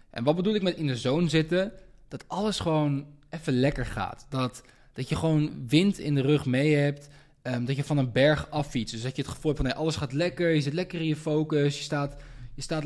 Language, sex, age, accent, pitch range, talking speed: Dutch, male, 20-39, Dutch, 125-155 Hz, 250 wpm